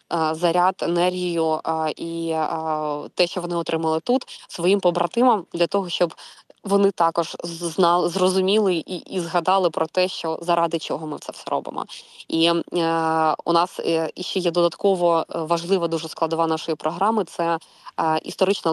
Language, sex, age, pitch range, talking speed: Ukrainian, female, 20-39, 160-190 Hz, 145 wpm